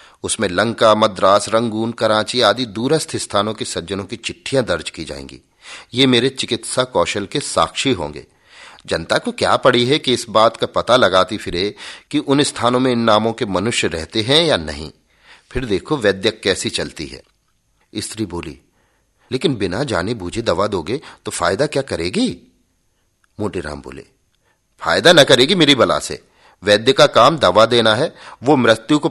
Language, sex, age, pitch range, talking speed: Hindi, male, 40-59, 105-125 Hz, 165 wpm